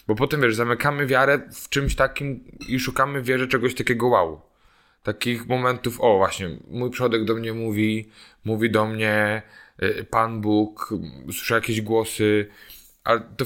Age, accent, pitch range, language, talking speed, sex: 20-39, native, 110-130 Hz, Polish, 150 wpm, male